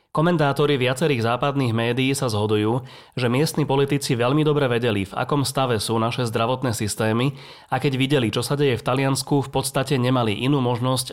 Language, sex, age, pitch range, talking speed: Slovak, male, 30-49, 115-135 Hz, 175 wpm